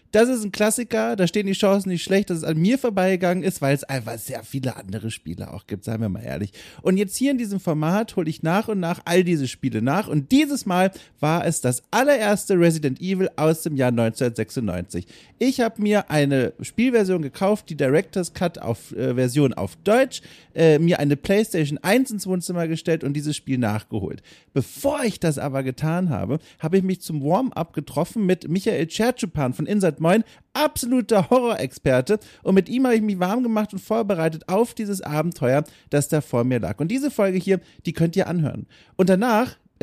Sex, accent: male, German